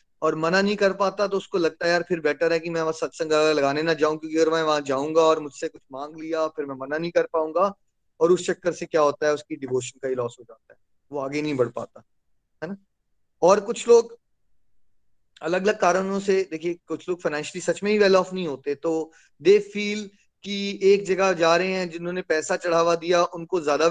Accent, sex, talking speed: native, male, 225 wpm